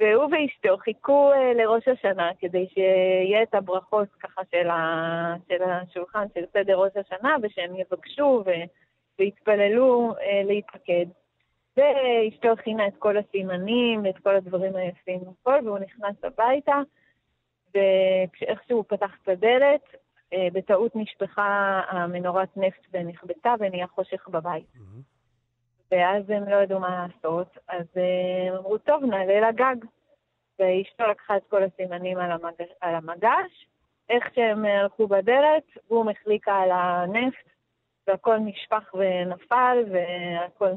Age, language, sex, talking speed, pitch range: 30-49, Hebrew, female, 115 wpm, 185-230 Hz